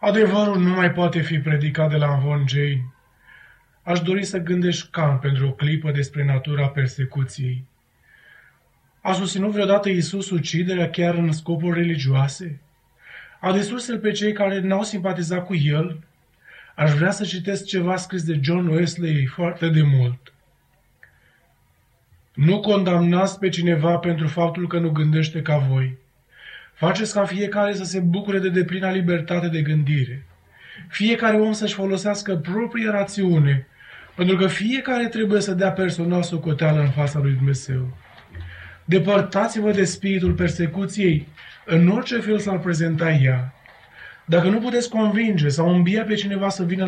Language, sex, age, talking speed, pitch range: Romanian, male, 20-39, 140 wpm, 150-195 Hz